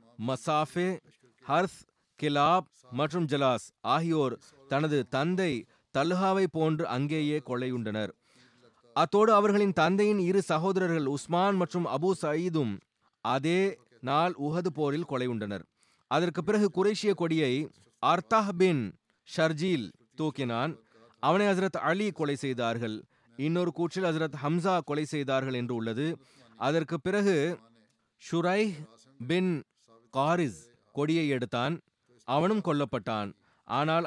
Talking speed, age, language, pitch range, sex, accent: 100 wpm, 30-49, Tamil, 130-175 Hz, male, native